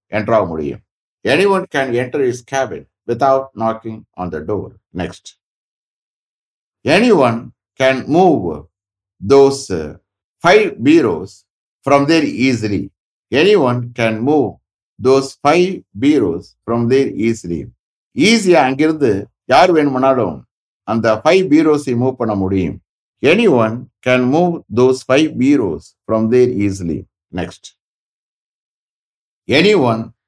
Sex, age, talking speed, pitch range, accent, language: male, 60-79, 95 wpm, 105-135 Hz, Indian, English